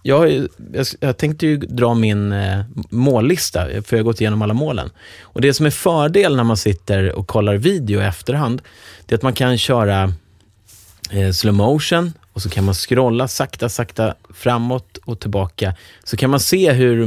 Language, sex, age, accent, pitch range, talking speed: English, male, 30-49, Swedish, 95-120 Hz, 185 wpm